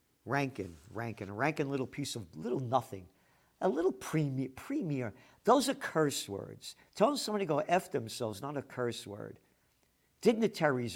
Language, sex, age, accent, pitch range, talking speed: English, male, 50-69, American, 120-185 Hz, 150 wpm